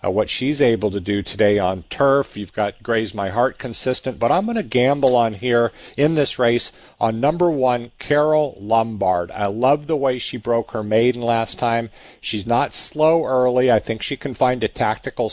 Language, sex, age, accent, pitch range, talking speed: English, male, 50-69, American, 110-130 Hz, 200 wpm